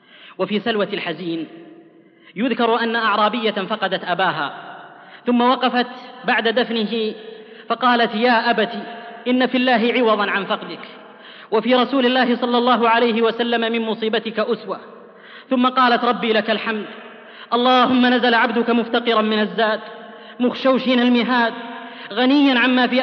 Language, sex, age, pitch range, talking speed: Arabic, female, 30-49, 210-245 Hz, 120 wpm